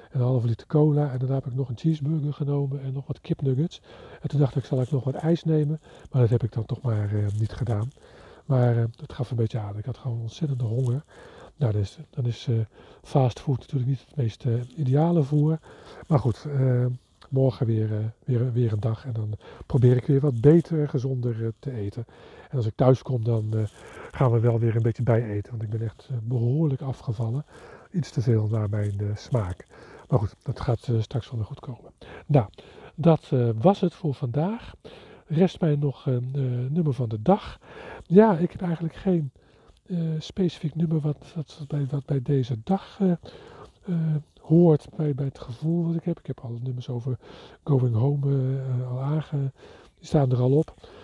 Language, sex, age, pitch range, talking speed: Dutch, male, 50-69, 120-150 Hz, 205 wpm